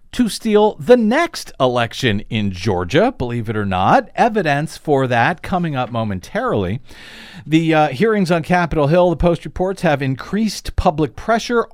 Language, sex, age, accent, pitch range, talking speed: English, male, 50-69, American, 110-165 Hz, 155 wpm